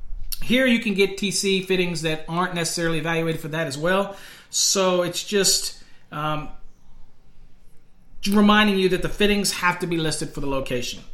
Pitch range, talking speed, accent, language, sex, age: 150-185 Hz, 160 wpm, American, English, male, 40-59